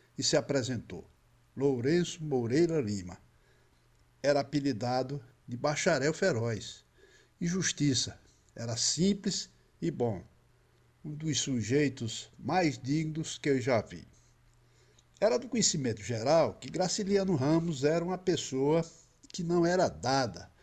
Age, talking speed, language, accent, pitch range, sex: 60-79, 115 wpm, Portuguese, Brazilian, 125-170 Hz, male